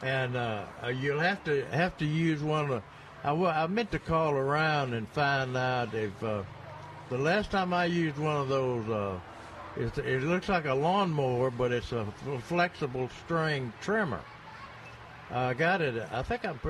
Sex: male